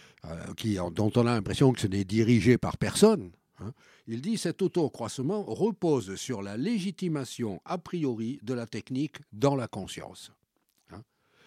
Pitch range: 100-155 Hz